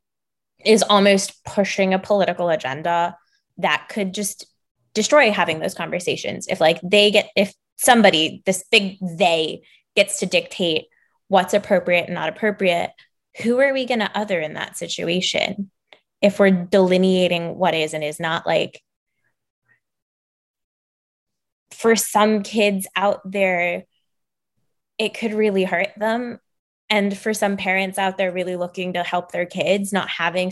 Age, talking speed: 20-39, 140 wpm